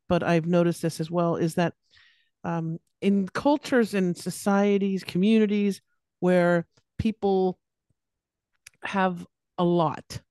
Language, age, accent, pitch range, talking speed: English, 50-69, American, 165-220 Hz, 110 wpm